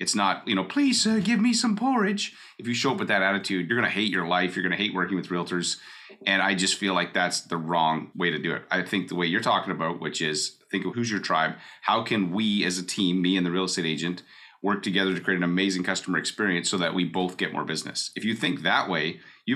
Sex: male